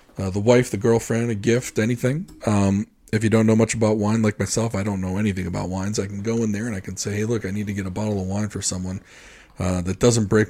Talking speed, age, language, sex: 280 wpm, 40-59, English, male